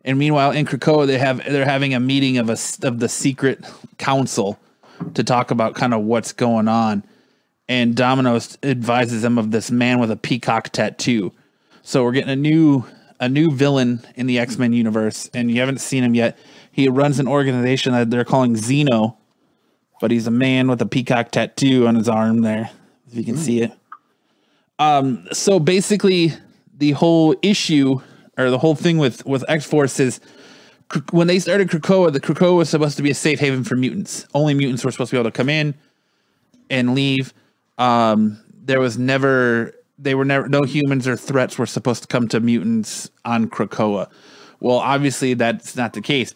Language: English